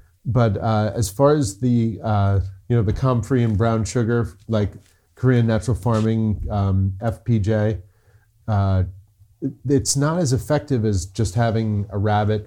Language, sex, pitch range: English, male, 100-125 Hz